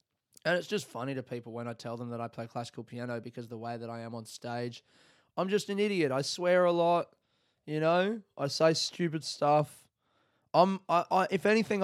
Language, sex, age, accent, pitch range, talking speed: English, male, 20-39, Australian, 120-155 Hz, 220 wpm